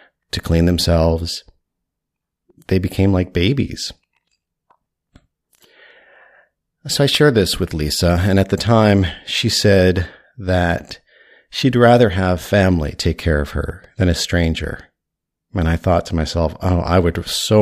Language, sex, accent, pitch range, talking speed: English, male, American, 90-110 Hz, 135 wpm